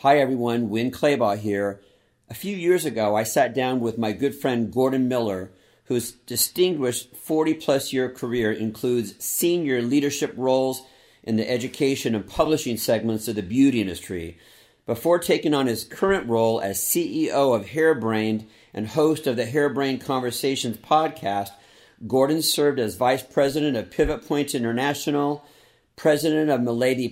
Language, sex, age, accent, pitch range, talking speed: English, male, 50-69, American, 110-150 Hz, 145 wpm